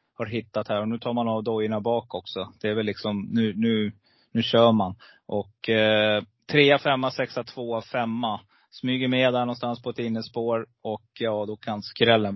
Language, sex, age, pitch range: Swedish, male, 30-49, 110-130 Hz